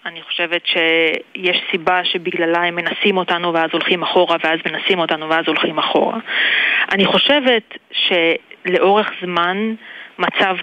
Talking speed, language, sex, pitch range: 125 wpm, English, female, 175-220 Hz